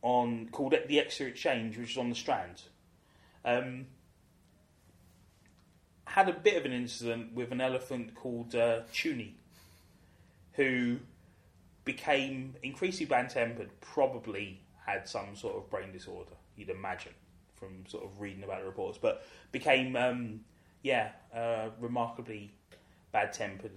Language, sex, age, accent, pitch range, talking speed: English, male, 20-39, British, 95-130 Hz, 130 wpm